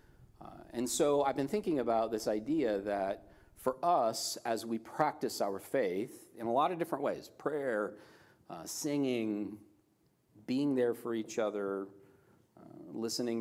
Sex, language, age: male, English, 40-59